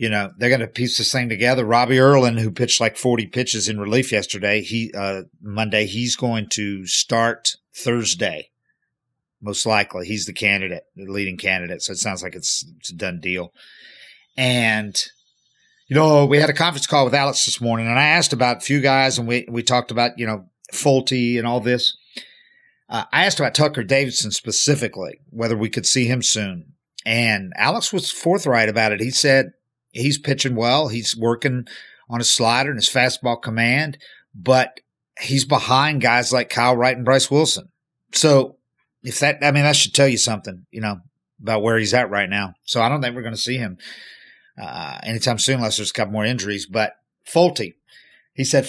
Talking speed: 195 wpm